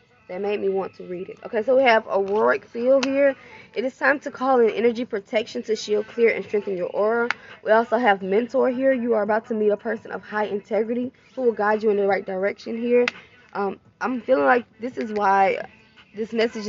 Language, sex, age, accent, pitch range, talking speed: English, female, 10-29, American, 200-240 Hz, 225 wpm